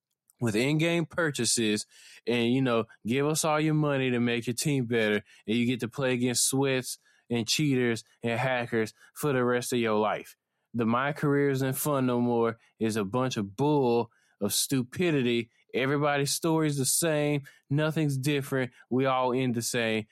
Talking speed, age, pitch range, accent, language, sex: 175 wpm, 20-39, 110-135 Hz, American, English, male